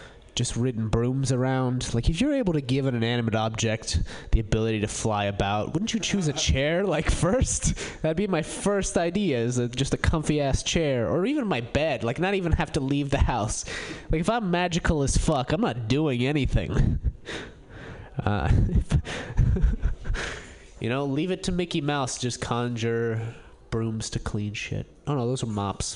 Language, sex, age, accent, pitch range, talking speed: English, male, 20-39, American, 115-180 Hz, 180 wpm